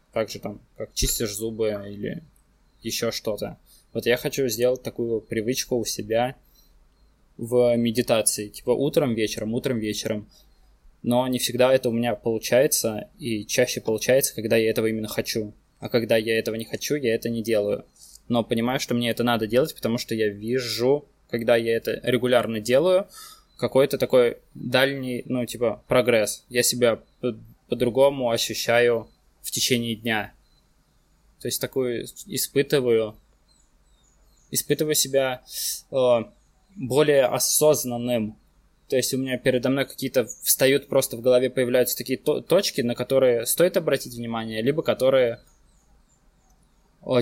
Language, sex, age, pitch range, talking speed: Russian, male, 20-39, 115-130 Hz, 135 wpm